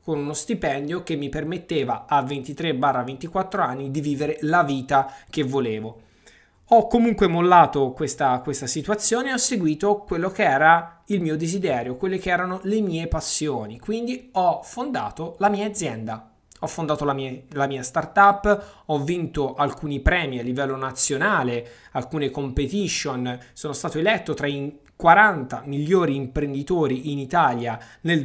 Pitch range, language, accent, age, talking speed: 140-195 Hz, Italian, native, 20-39, 145 wpm